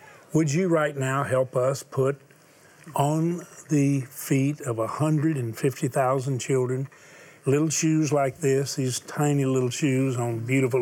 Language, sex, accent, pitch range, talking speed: English, male, American, 130-155 Hz, 130 wpm